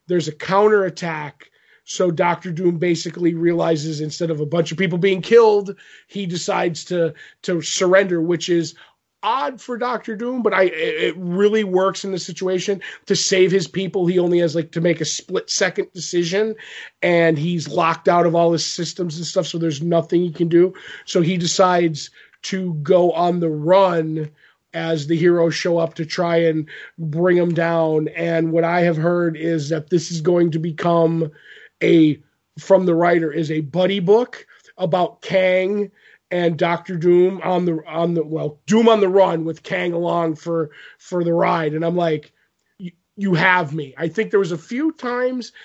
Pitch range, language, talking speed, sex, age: 165-190 Hz, English, 185 wpm, male, 30-49